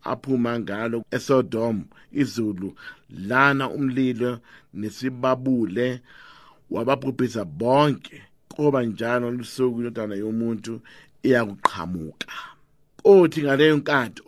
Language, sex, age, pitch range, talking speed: English, male, 50-69, 115-145 Hz, 80 wpm